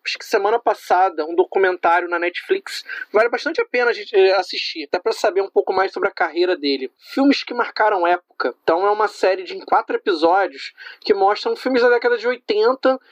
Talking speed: 185 wpm